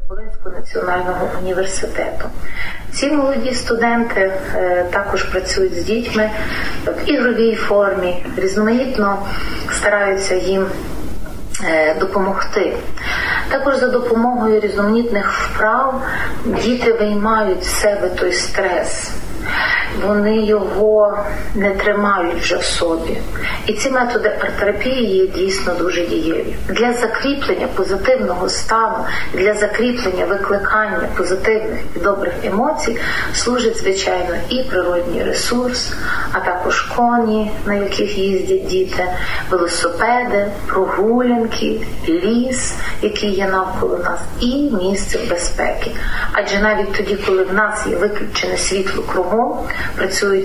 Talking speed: 100 wpm